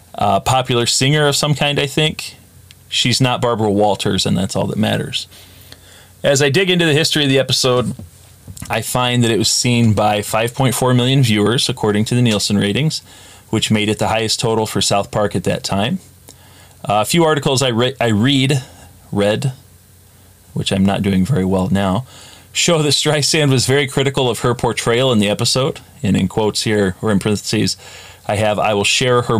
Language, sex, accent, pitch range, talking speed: English, male, American, 100-130 Hz, 195 wpm